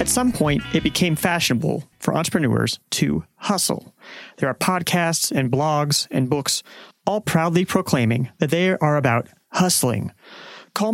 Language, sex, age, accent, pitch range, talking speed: English, male, 30-49, American, 130-175 Hz, 145 wpm